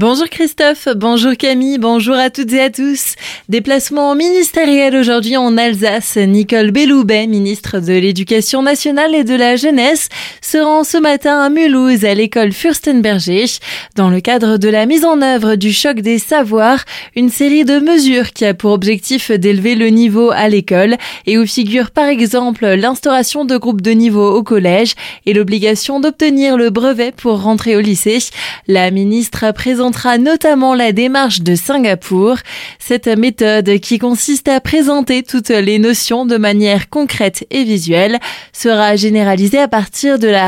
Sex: female